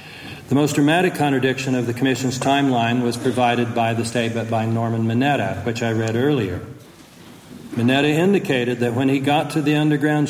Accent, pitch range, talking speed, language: American, 120-145 Hz, 170 wpm, English